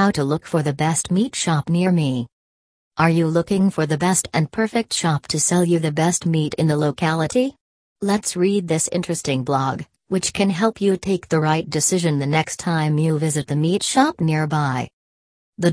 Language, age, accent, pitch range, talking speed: English, 40-59, American, 145-180 Hz, 195 wpm